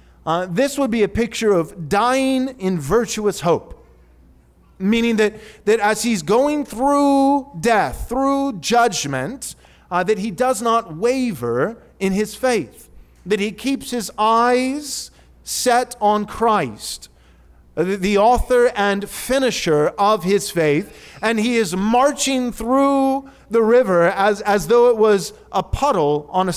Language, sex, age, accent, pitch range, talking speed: English, male, 40-59, American, 185-245 Hz, 140 wpm